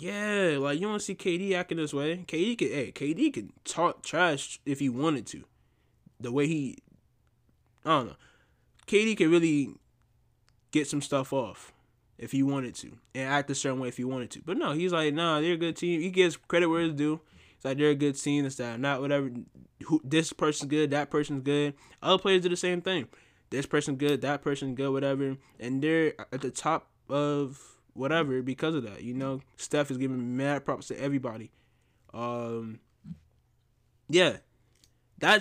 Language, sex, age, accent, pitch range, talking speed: English, male, 20-39, American, 130-180 Hz, 195 wpm